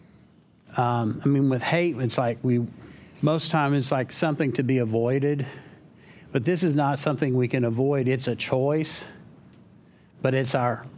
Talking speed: 165 wpm